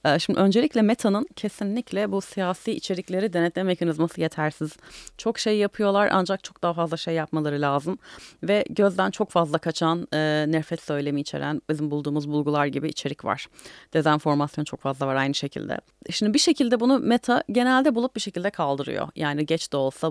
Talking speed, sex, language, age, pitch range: 165 wpm, female, Turkish, 30-49, 155-215 Hz